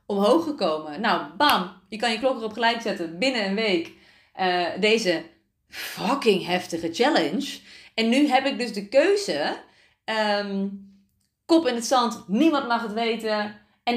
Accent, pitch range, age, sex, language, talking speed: Dutch, 190-235 Hz, 30-49, female, Dutch, 150 wpm